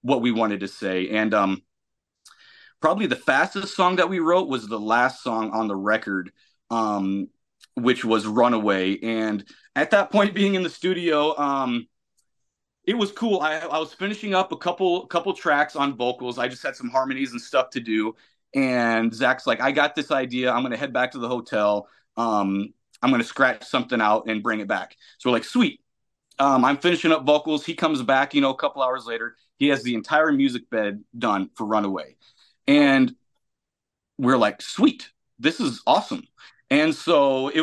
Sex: male